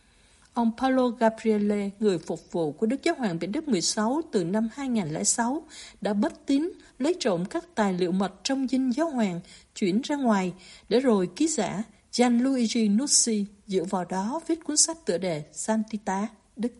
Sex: female